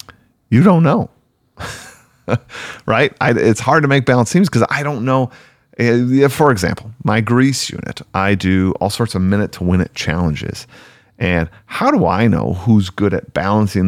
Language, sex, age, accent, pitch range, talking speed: English, male, 40-59, American, 95-120 Hz, 170 wpm